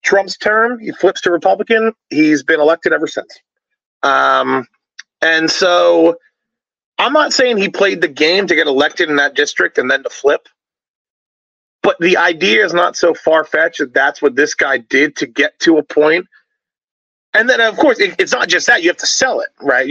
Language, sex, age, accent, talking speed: English, male, 30-49, American, 195 wpm